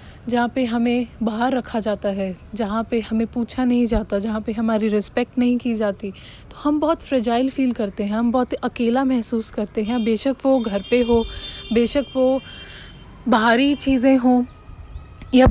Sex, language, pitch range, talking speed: female, English, 225-265 Hz, 170 wpm